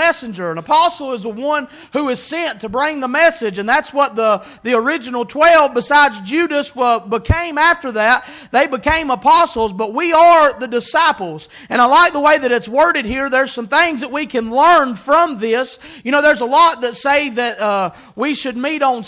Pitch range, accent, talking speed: 255-330 Hz, American, 200 wpm